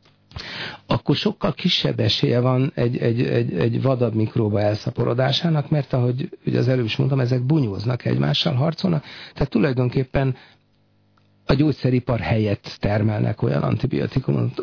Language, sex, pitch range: Hungarian, male, 110-135 Hz